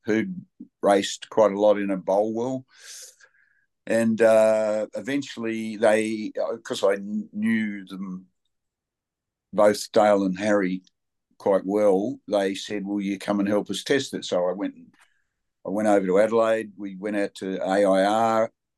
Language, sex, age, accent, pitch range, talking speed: English, male, 60-79, Australian, 100-115 Hz, 145 wpm